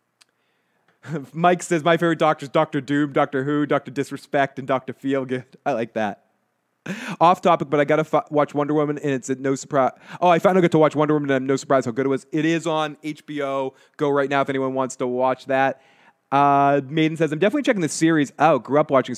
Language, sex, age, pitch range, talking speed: English, male, 30-49, 135-160 Hz, 240 wpm